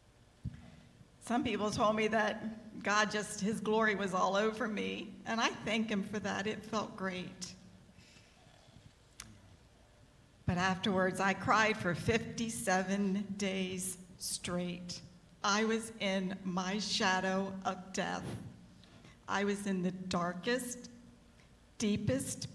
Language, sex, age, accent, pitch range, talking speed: English, female, 50-69, American, 185-220 Hz, 115 wpm